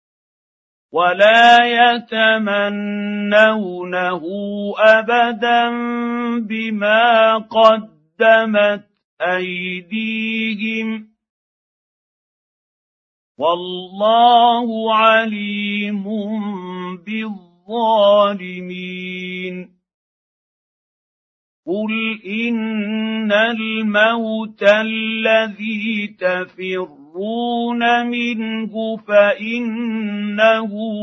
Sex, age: male, 50-69